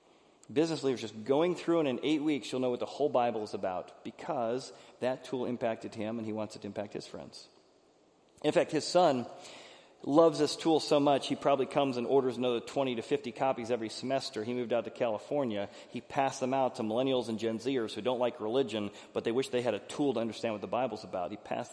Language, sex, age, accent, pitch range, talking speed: English, male, 30-49, American, 110-135 Hz, 230 wpm